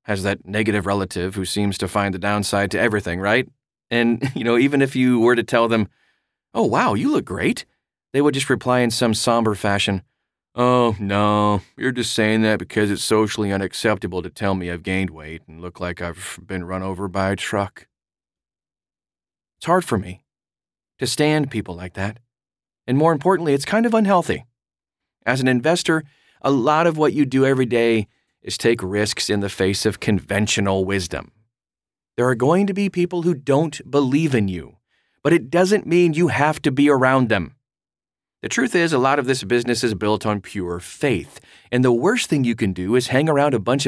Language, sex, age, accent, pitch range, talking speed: English, male, 30-49, American, 100-140 Hz, 195 wpm